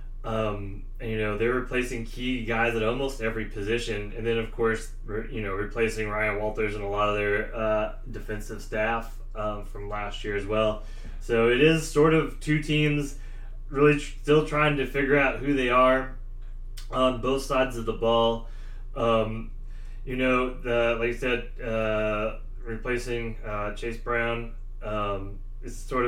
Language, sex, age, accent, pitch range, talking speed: English, male, 20-39, American, 115-135 Hz, 170 wpm